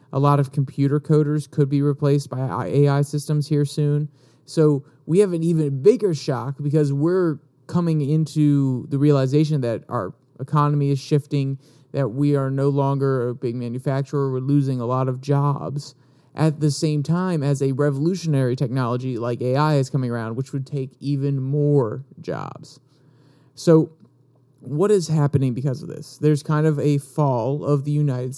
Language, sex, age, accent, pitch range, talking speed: English, male, 30-49, American, 135-150 Hz, 165 wpm